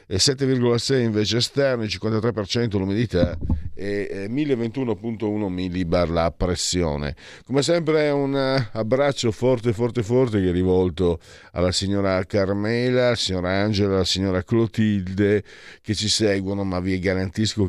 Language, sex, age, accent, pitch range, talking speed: Italian, male, 50-69, native, 90-115 Hz, 115 wpm